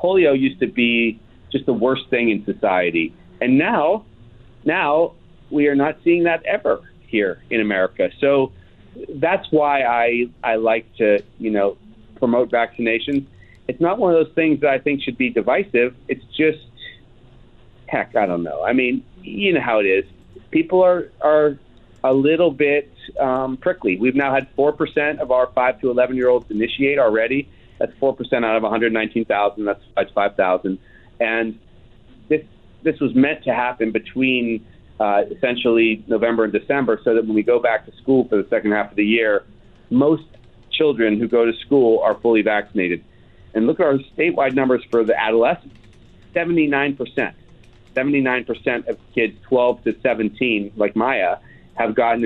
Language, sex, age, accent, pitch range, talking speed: English, male, 40-59, American, 110-135 Hz, 160 wpm